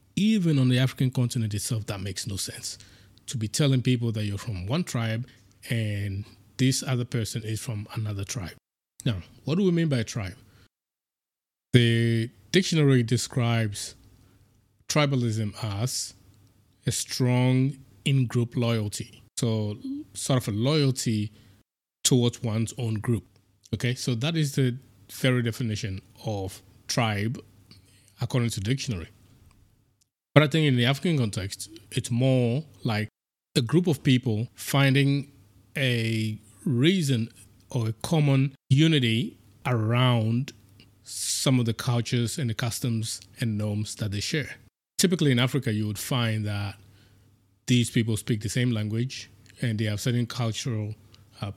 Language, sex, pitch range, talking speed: English, male, 105-130 Hz, 135 wpm